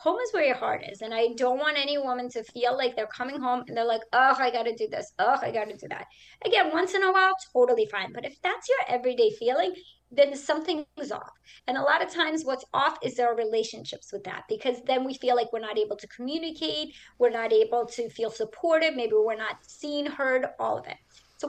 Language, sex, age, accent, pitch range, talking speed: English, male, 30-49, American, 245-325 Hz, 240 wpm